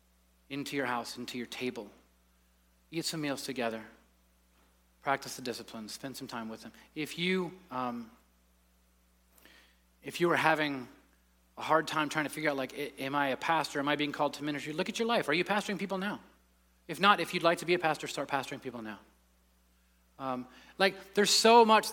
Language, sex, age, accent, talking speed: English, male, 30-49, American, 185 wpm